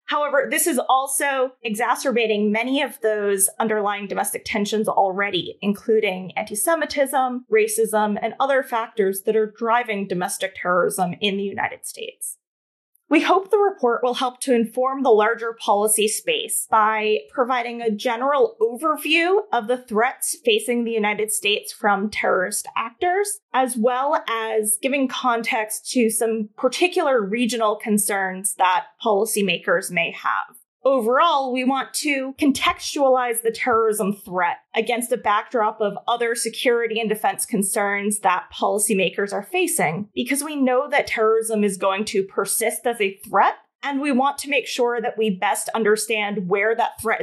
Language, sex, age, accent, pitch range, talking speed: English, female, 20-39, American, 210-270 Hz, 145 wpm